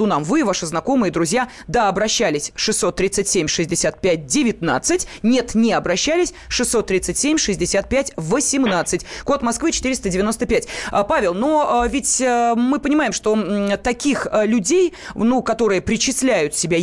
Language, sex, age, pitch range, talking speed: Russian, female, 20-39, 185-255 Hz, 95 wpm